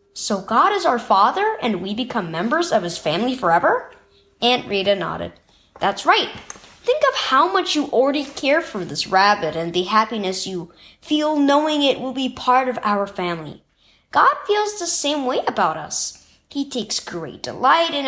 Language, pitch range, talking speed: English, 210-325 Hz, 175 wpm